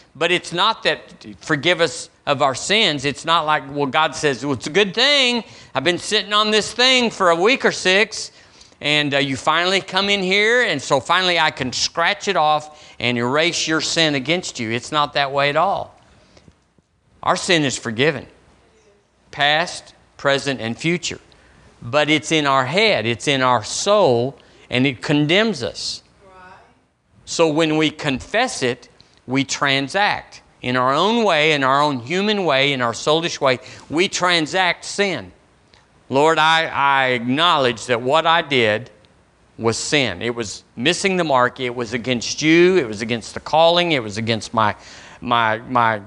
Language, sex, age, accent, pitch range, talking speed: English, male, 50-69, American, 125-175 Hz, 170 wpm